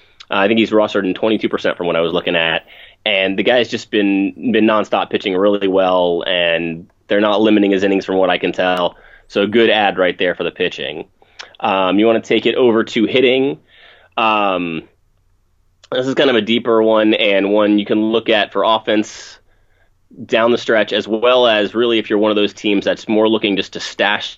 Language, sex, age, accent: English, male, 30-49, American